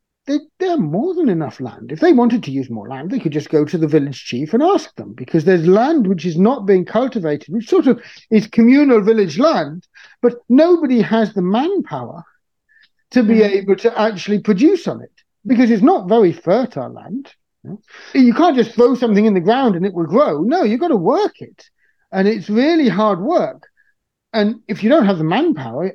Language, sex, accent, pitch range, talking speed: English, male, British, 160-240 Hz, 205 wpm